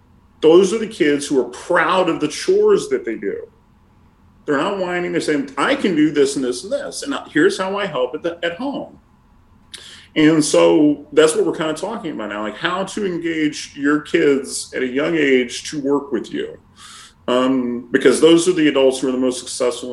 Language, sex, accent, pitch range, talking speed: English, male, American, 130-220 Hz, 210 wpm